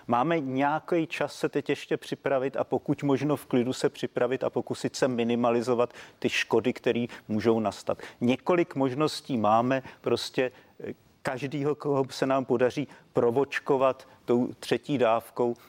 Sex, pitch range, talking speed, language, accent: male, 120-140 Hz, 140 wpm, Czech, native